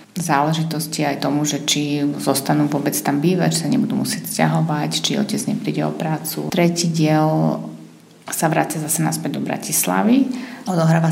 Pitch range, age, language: 155-170 Hz, 30-49, Slovak